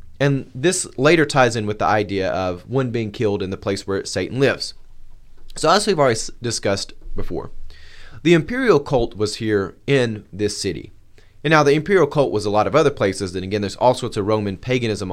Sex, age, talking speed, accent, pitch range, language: male, 30-49, 200 wpm, American, 105-135 Hz, English